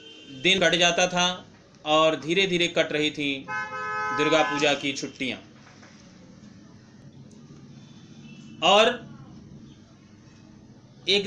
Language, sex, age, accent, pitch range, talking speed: Hindi, male, 40-59, native, 105-170 Hz, 85 wpm